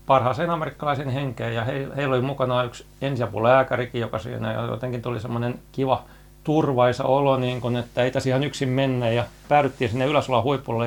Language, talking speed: Finnish, 160 wpm